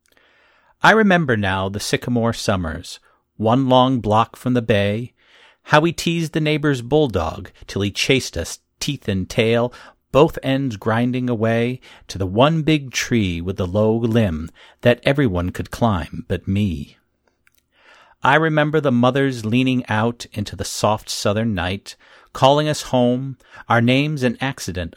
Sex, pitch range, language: male, 100-135 Hz, English